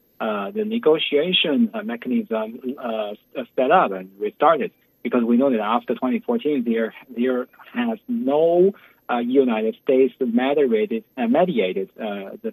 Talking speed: 140 wpm